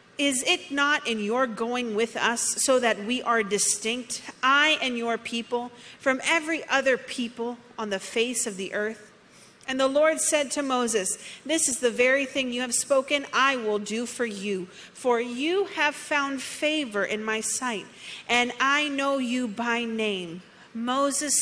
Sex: female